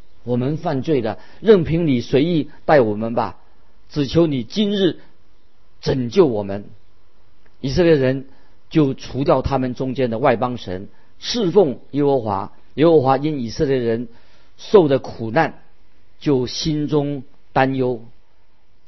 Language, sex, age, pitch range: Chinese, male, 50-69, 115-150 Hz